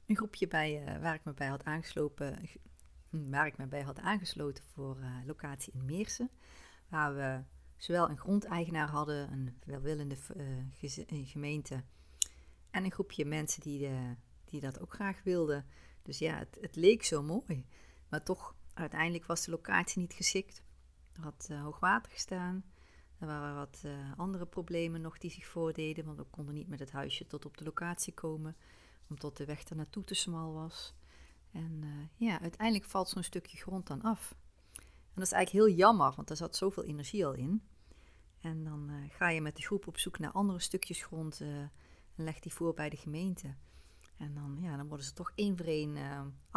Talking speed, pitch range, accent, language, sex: 175 wpm, 140-175 Hz, Dutch, Dutch, female